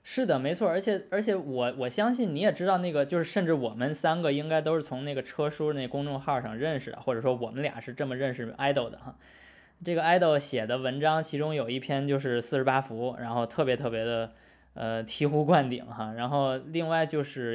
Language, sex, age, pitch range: Chinese, male, 20-39, 120-155 Hz